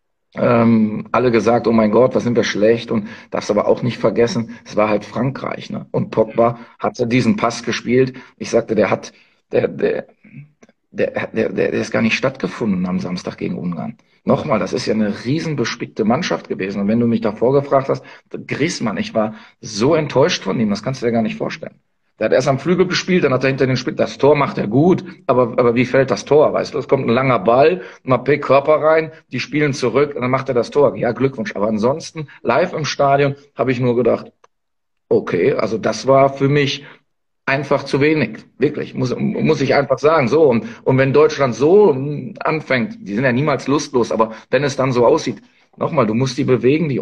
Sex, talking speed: male, 215 wpm